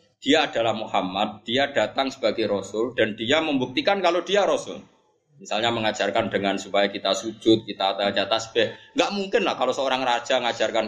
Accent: native